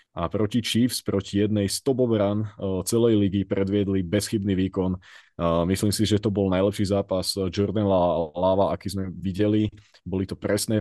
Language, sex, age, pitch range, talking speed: Slovak, male, 20-39, 95-105 Hz, 165 wpm